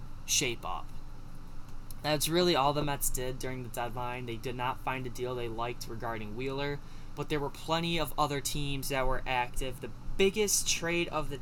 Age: 10-29